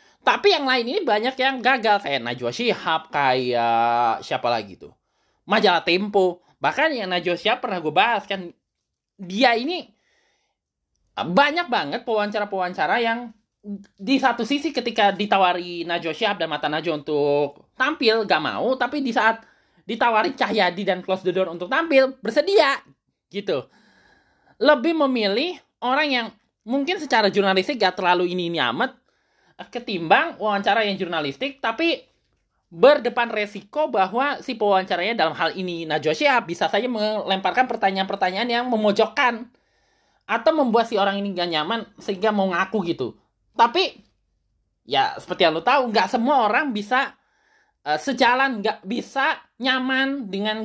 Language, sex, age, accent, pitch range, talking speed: Indonesian, male, 20-39, native, 185-260 Hz, 140 wpm